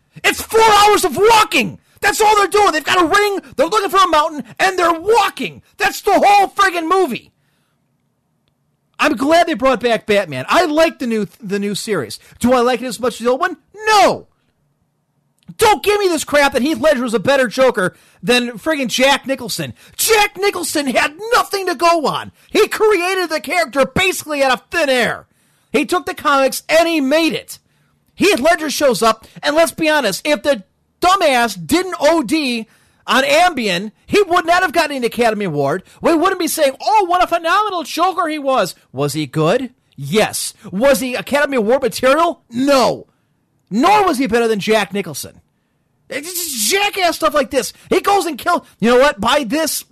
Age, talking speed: 40-59, 185 wpm